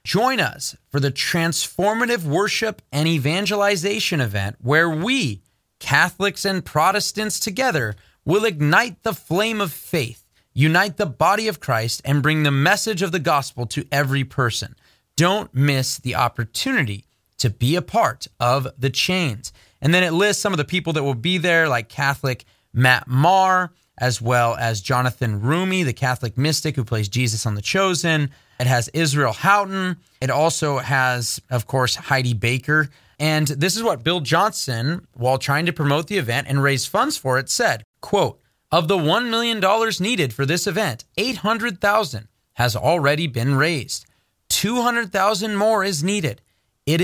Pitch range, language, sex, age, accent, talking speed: 125-195 Hz, English, male, 30-49, American, 160 wpm